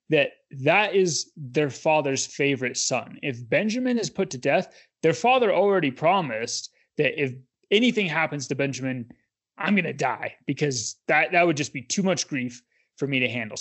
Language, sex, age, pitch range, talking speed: English, male, 20-39, 130-160 Hz, 170 wpm